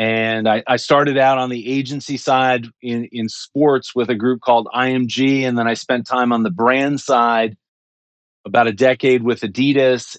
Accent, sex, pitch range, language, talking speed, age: American, male, 120-150 Hz, English, 185 wpm, 40-59